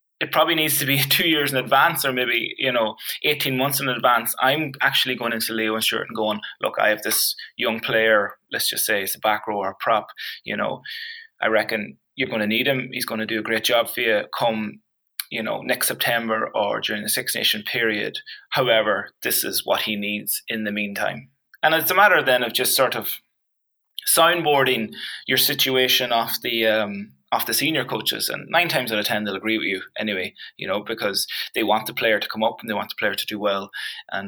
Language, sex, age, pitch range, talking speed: English, male, 20-39, 110-140 Hz, 225 wpm